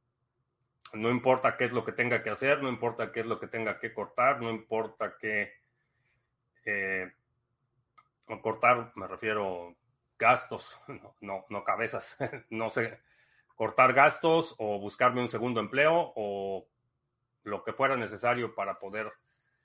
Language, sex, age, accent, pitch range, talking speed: Spanish, male, 30-49, Mexican, 110-125 Hz, 145 wpm